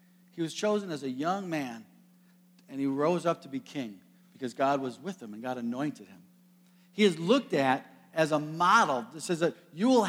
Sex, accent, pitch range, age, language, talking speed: male, American, 165-210 Hz, 50-69, English, 210 wpm